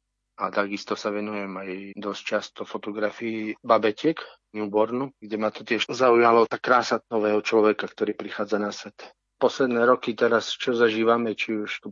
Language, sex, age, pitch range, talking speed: Slovak, male, 30-49, 100-110 Hz, 160 wpm